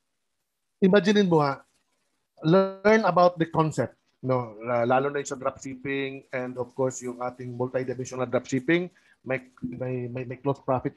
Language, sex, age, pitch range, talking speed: Filipino, male, 50-69, 135-190 Hz, 125 wpm